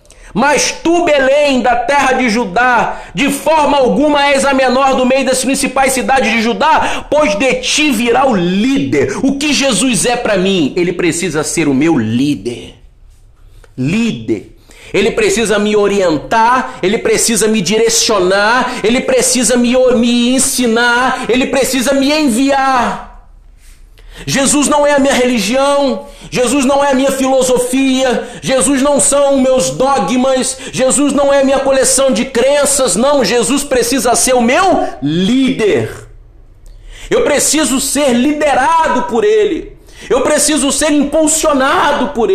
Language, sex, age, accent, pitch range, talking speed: Portuguese, male, 40-59, Brazilian, 245-290 Hz, 140 wpm